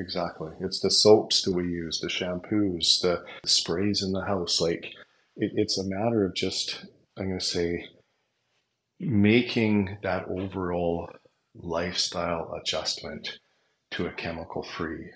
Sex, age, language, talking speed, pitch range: male, 40-59, English, 130 wpm, 90-110 Hz